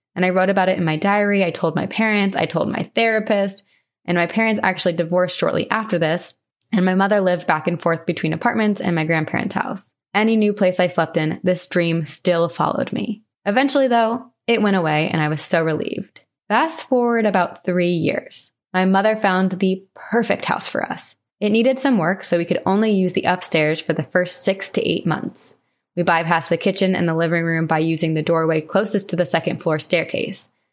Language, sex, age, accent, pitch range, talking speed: English, female, 20-39, American, 170-205 Hz, 210 wpm